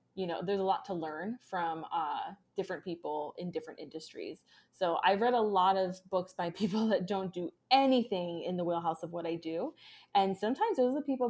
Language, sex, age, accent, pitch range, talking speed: English, female, 20-39, American, 170-215 Hz, 210 wpm